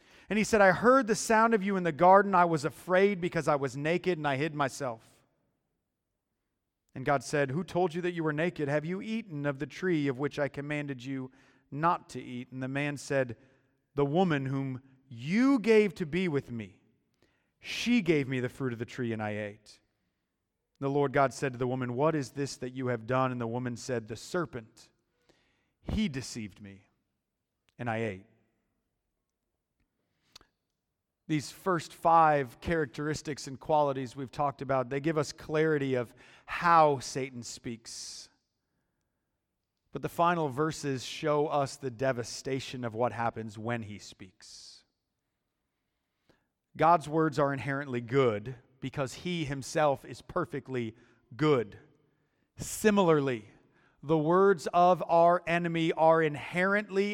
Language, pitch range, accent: English, 125-165 Hz, American